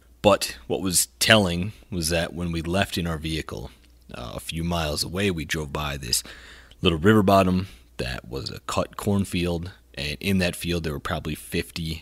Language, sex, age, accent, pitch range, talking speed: English, male, 30-49, American, 75-90 Hz, 185 wpm